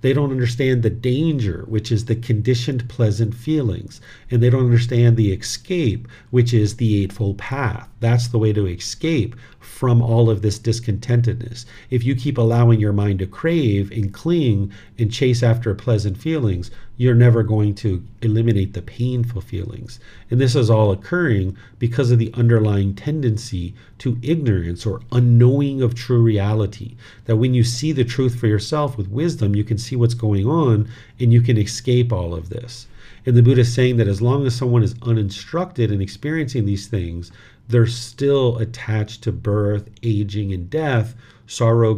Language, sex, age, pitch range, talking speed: English, male, 40-59, 105-120 Hz, 170 wpm